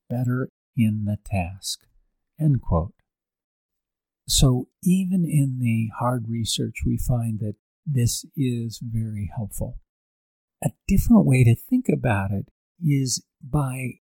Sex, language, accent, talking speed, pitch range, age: male, English, American, 120 wpm, 105-135 Hz, 50-69